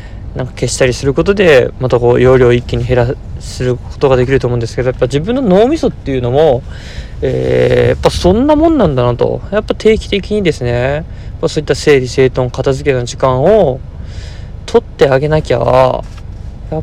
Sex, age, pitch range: male, 20-39, 115-145 Hz